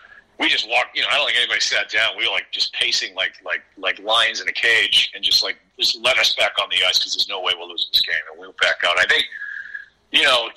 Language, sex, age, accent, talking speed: English, male, 50-69, American, 280 wpm